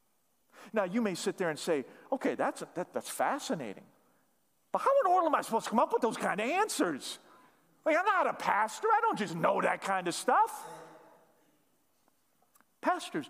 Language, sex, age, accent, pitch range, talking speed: English, male, 40-59, American, 190-275 Hz, 190 wpm